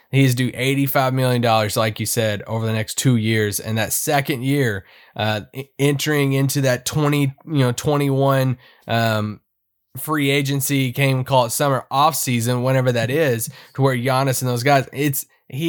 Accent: American